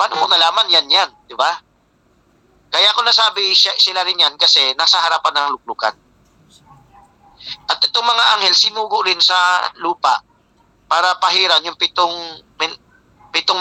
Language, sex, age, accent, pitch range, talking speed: Filipino, male, 40-59, native, 155-190 Hz, 135 wpm